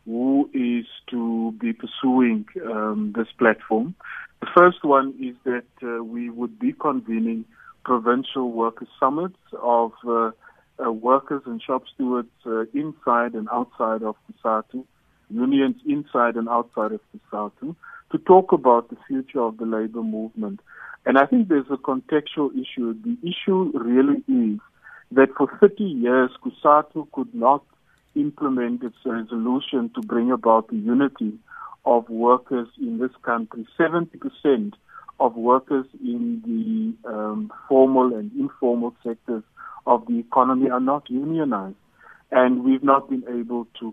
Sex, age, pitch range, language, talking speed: male, 50-69, 115-185 Hz, English, 140 wpm